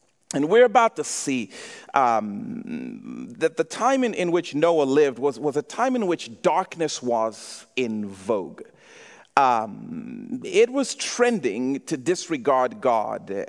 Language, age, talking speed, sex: English, 40-59, 140 wpm, male